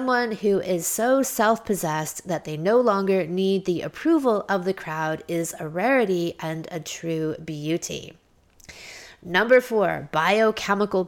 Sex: female